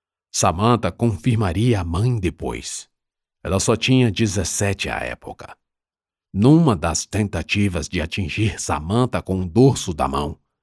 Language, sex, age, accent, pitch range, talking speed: Portuguese, male, 50-69, Brazilian, 85-120 Hz, 125 wpm